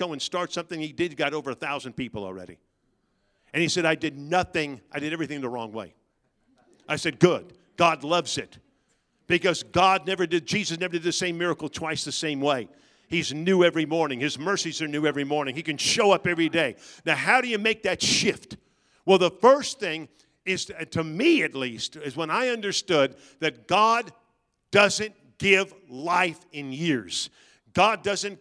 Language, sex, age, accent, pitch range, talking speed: English, male, 50-69, American, 160-215 Hz, 190 wpm